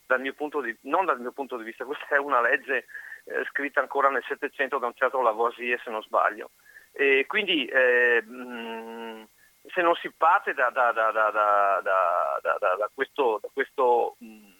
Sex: male